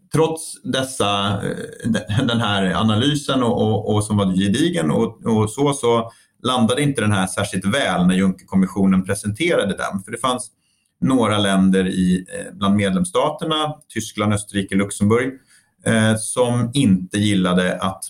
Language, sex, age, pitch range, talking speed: Swedish, male, 30-49, 95-120 Hz, 140 wpm